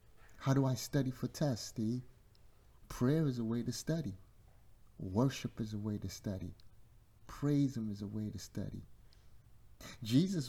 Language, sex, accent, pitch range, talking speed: English, male, American, 95-125 Hz, 160 wpm